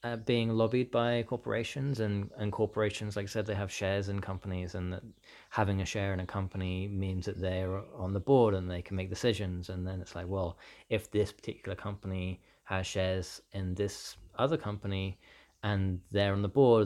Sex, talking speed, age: male, 195 wpm, 20-39